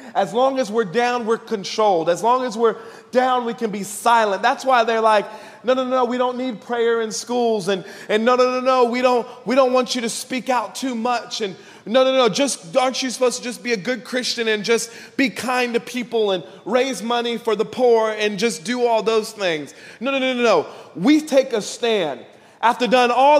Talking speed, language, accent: 230 wpm, English, American